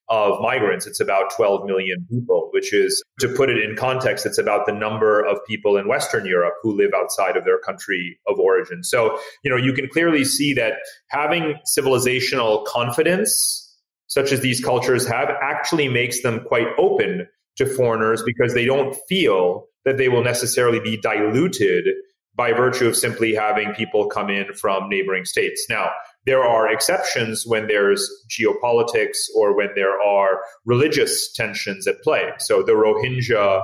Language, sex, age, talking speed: English, male, 30-49, 165 wpm